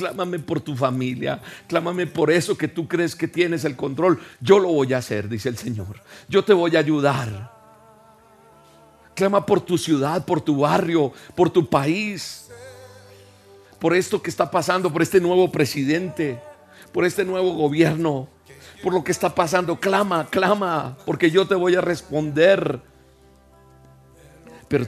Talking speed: 155 wpm